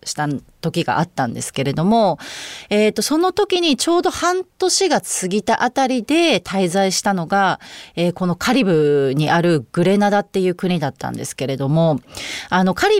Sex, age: female, 30-49